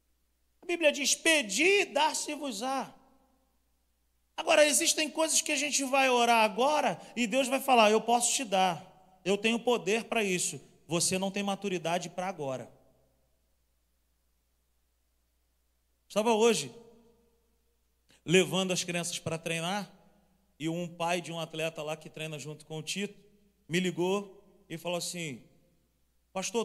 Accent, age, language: Brazilian, 40-59, Portuguese